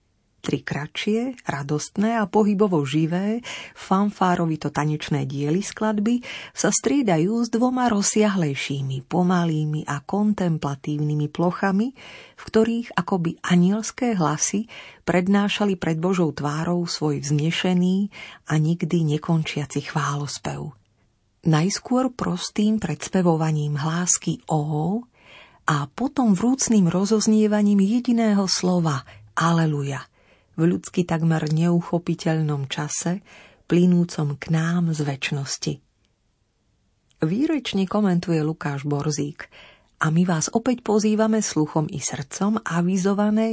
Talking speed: 95 wpm